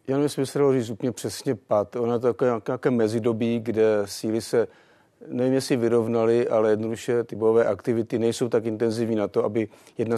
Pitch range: 105-115 Hz